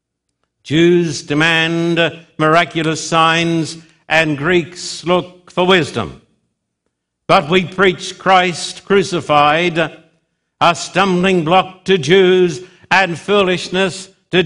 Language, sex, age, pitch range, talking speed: English, male, 60-79, 140-185 Hz, 90 wpm